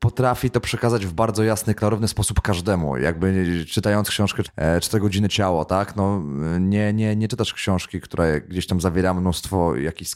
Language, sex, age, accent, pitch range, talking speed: Polish, male, 20-39, native, 90-110 Hz, 165 wpm